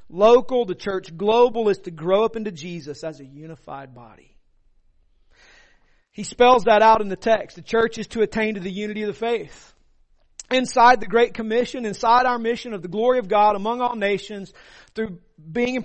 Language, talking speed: English, 190 wpm